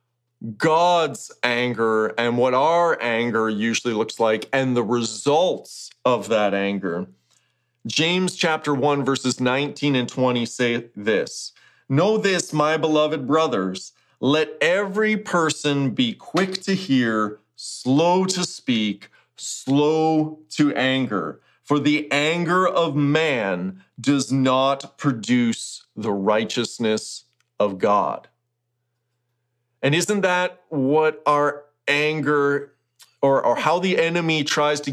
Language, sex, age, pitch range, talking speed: English, male, 40-59, 120-155 Hz, 115 wpm